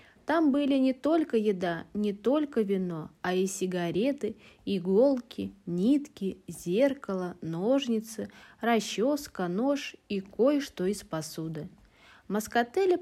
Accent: native